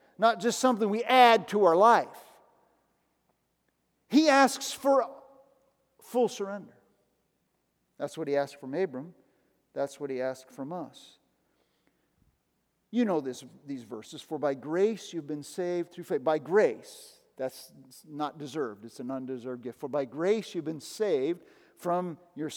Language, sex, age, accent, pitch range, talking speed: English, male, 50-69, American, 155-245 Hz, 145 wpm